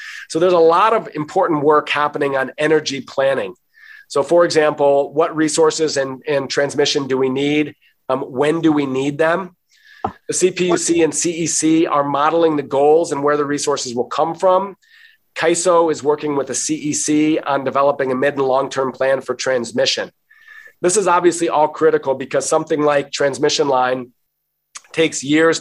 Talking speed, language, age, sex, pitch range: 165 wpm, English, 40-59, male, 135-160 Hz